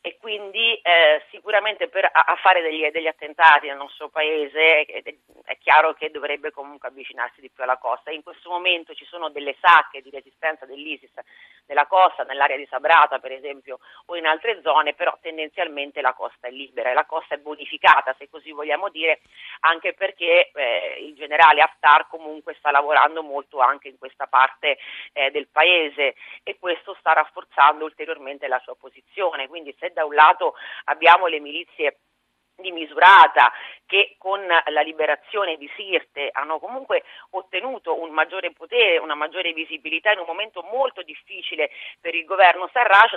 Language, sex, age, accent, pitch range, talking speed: Italian, female, 40-59, native, 150-190 Hz, 165 wpm